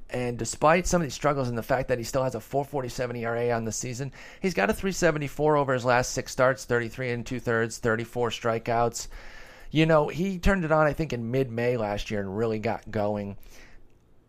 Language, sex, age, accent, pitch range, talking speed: English, male, 30-49, American, 110-135 Hz, 210 wpm